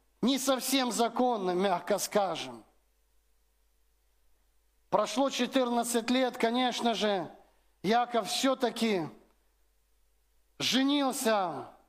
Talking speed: 65 wpm